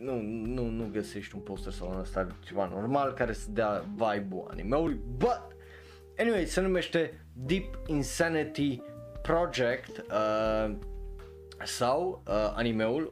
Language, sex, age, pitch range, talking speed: Romanian, male, 20-39, 105-135 Hz, 130 wpm